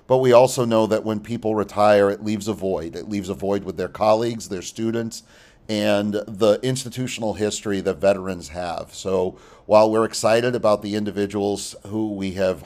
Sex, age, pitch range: male, 40-59, 100-115 Hz